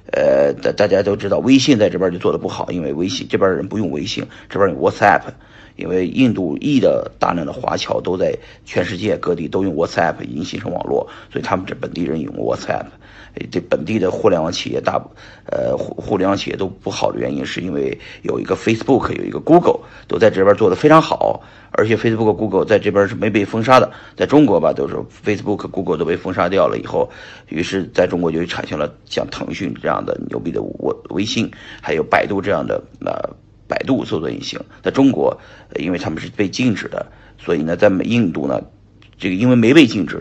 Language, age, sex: Chinese, 50-69, male